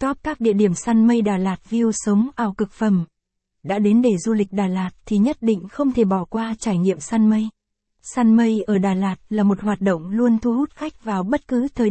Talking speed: 240 wpm